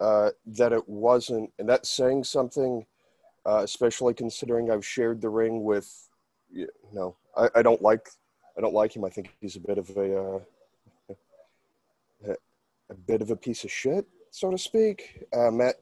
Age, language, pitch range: 30-49, English, 115-145 Hz